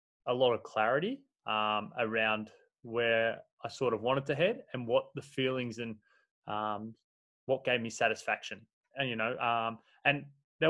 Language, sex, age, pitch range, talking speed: English, male, 20-39, 110-135 Hz, 165 wpm